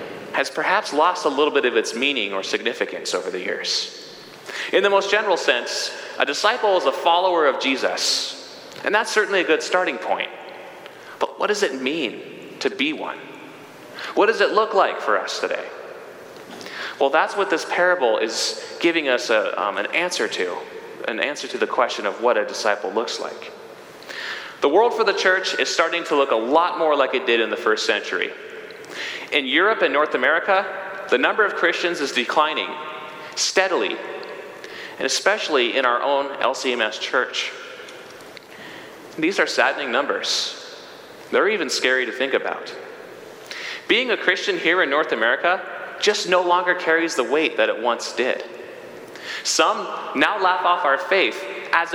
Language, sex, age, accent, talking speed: English, male, 30-49, American, 165 wpm